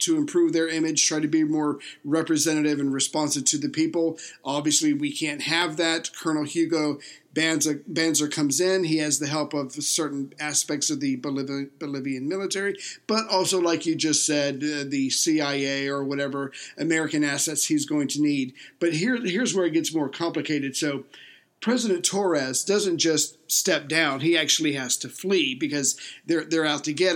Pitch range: 145-175 Hz